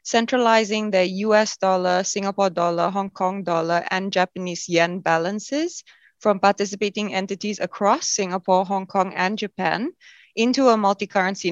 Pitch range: 175-220 Hz